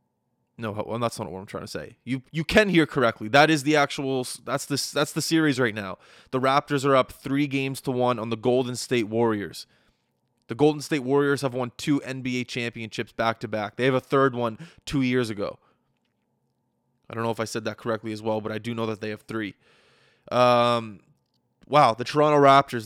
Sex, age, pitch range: male, 20-39, 110-140 Hz